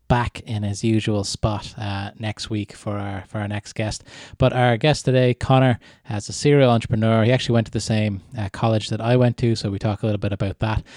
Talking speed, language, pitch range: 235 wpm, English, 105-125 Hz